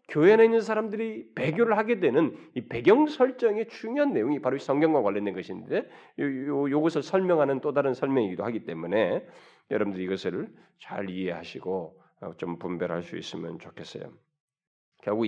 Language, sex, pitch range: Korean, male, 100-160 Hz